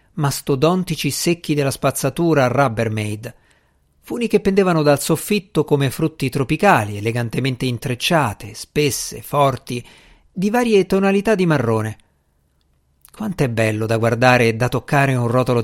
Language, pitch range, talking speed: Italian, 110-160 Hz, 125 wpm